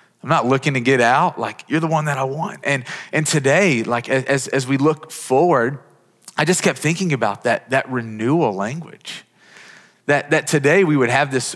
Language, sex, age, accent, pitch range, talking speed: English, male, 30-49, American, 125-155 Hz, 195 wpm